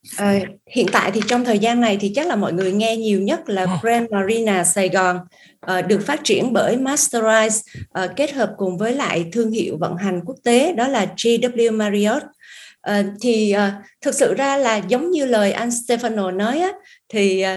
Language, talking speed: Vietnamese, 180 wpm